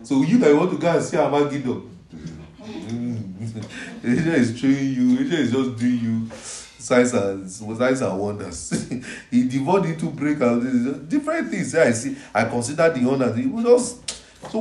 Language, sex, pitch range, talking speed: English, male, 110-155 Hz, 175 wpm